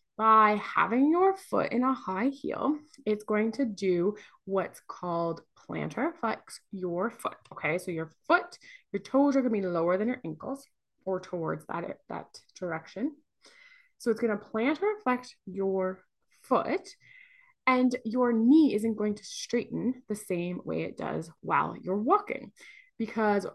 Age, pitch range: 20-39, 185-280 Hz